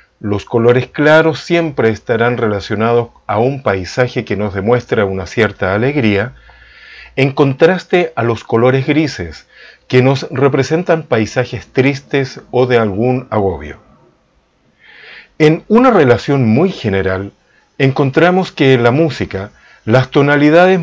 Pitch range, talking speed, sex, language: 110-145 Hz, 120 wpm, male, Spanish